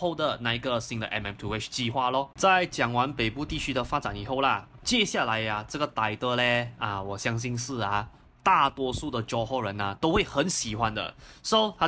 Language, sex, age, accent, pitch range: Chinese, male, 20-39, native, 115-150 Hz